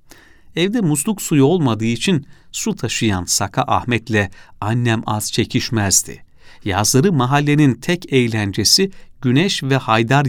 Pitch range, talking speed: 105-155 Hz, 110 wpm